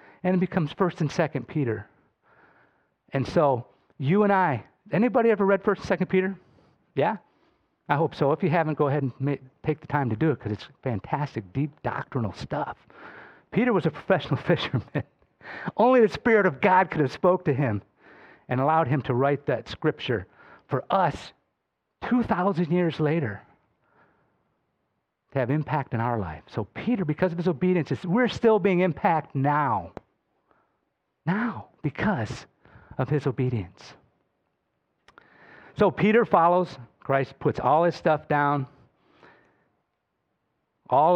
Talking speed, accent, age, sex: 145 wpm, American, 50-69, male